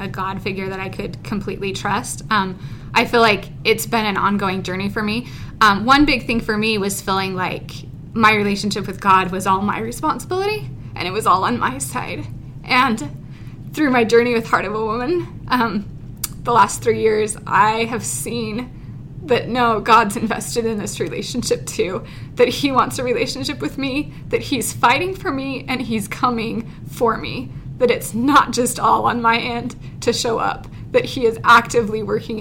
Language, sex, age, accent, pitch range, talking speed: English, female, 20-39, American, 190-235 Hz, 185 wpm